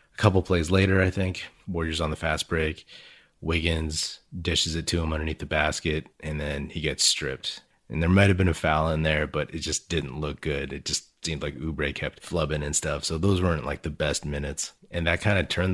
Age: 30-49